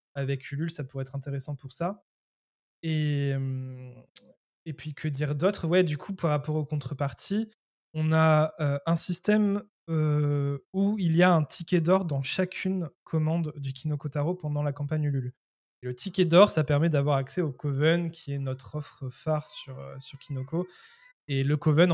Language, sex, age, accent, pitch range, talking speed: French, male, 20-39, French, 140-165 Hz, 180 wpm